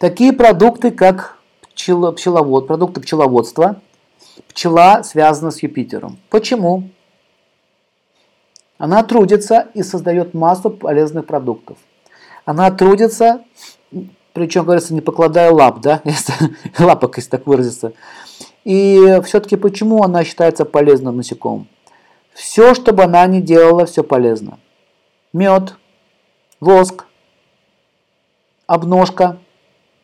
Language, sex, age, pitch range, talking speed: Russian, male, 50-69, 155-195 Hz, 95 wpm